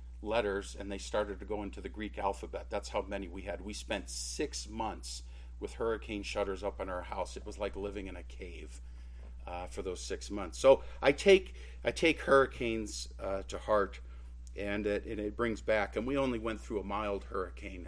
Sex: male